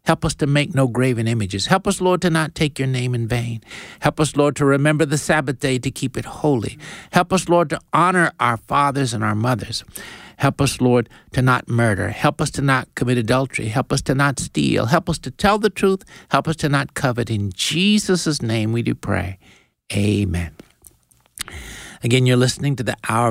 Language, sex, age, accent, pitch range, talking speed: English, male, 60-79, American, 105-140 Hz, 205 wpm